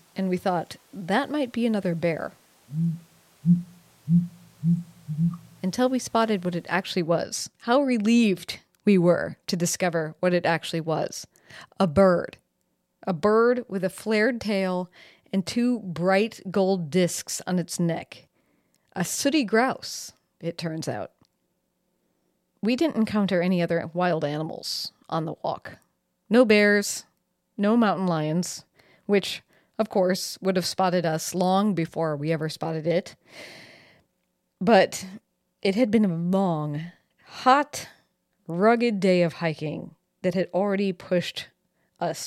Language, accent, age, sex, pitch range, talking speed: English, American, 40-59, female, 165-205 Hz, 130 wpm